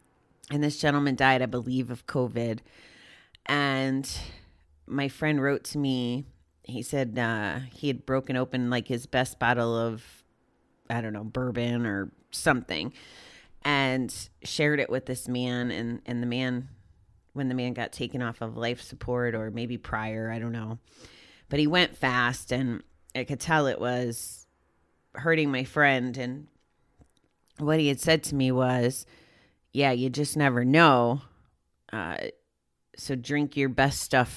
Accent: American